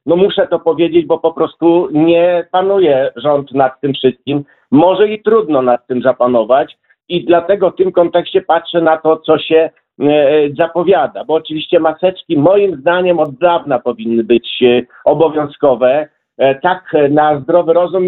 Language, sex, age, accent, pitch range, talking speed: Polish, male, 50-69, native, 140-185 Hz, 155 wpm